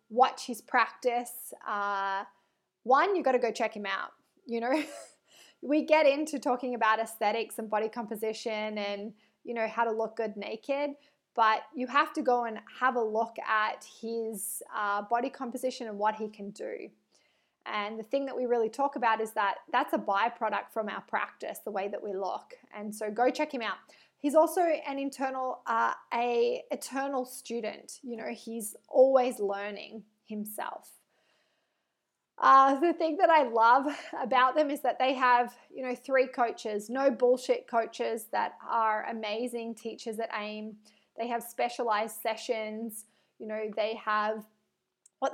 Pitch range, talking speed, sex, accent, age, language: 215-260 Hz, 165 wpm, female, Australian, 20-39, English